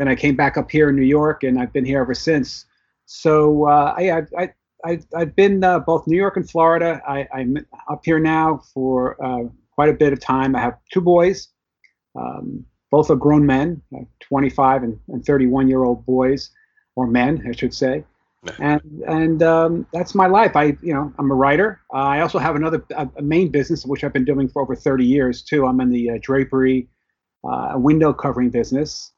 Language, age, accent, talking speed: English, 40-59, American, 200 wpm